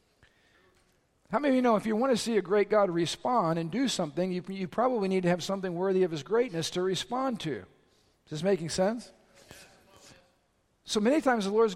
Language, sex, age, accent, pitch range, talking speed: English, male, 50-69, American, 150-195 Hz, 205 wpm